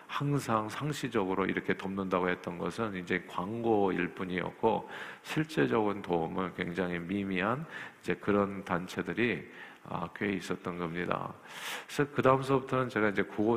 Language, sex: Korean, male